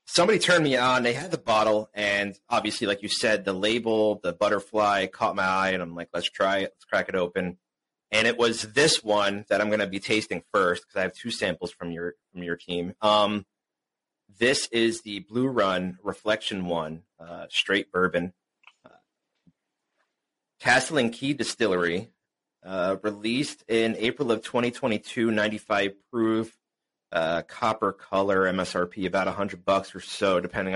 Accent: American